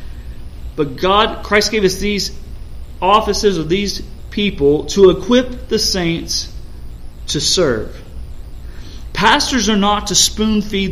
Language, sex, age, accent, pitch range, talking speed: English, male, 40-59, American, 140-205 Hz, 115 wpm